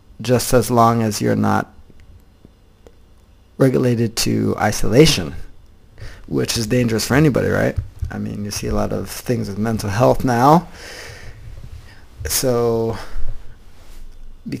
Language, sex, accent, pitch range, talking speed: English, male, American, 95-125 Hz, 120 wpm